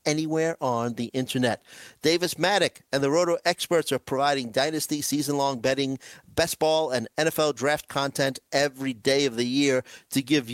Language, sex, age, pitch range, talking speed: English, male, 50-69, 115-160 Hz, 160 wpm